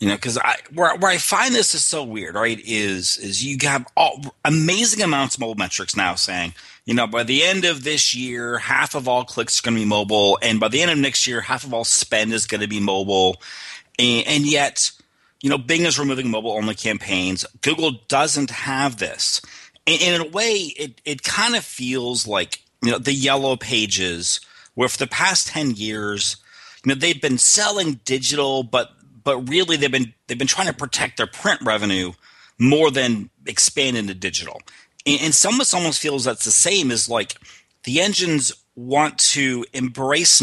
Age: 30-49